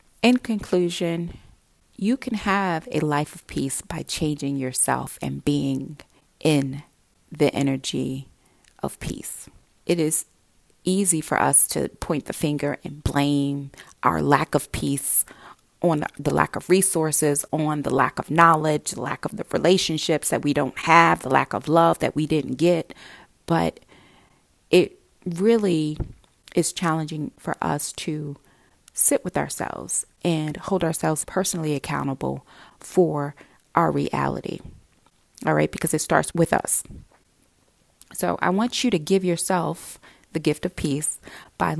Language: English